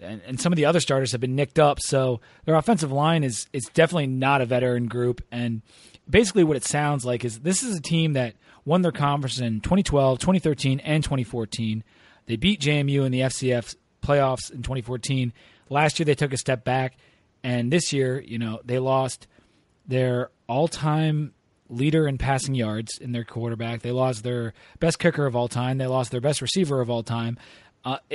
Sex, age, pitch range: male, 30-49, 120-150 Hz